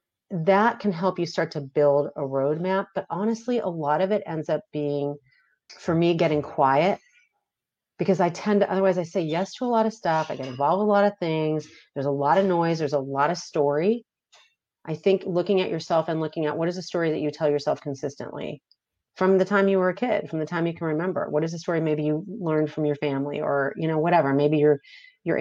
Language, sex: English, female